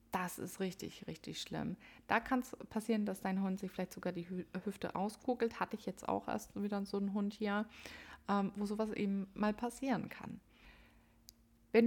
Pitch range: 180-225 Hz